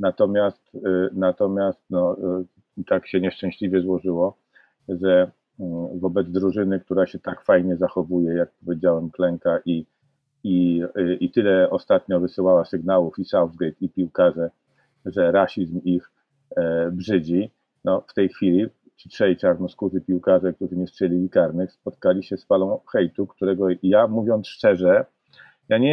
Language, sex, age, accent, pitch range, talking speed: Polish, male, 40-59, native, 90-110 Hz, 140 wpm